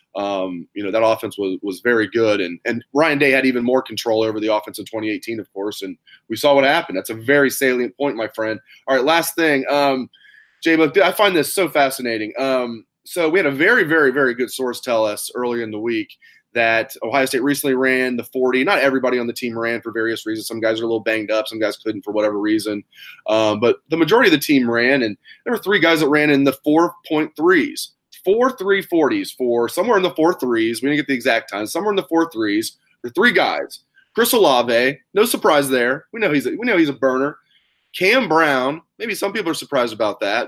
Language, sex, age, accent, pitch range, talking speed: English, male, 20-39, American, 115-150 Hz, 230 wpm